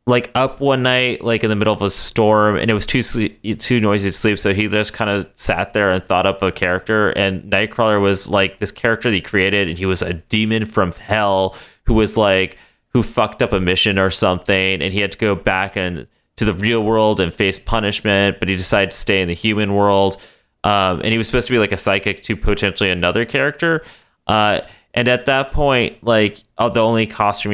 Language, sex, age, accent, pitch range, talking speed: English, male, 30-49, American, 95-115 Hz, 230 wpm